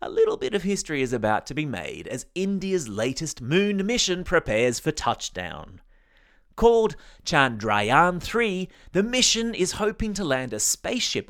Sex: male